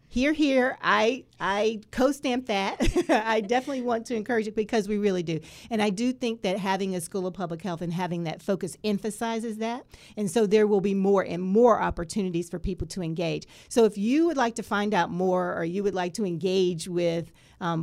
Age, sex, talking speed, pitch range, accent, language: 40-59, female, 215 wpm, 180-220 Hz, American, English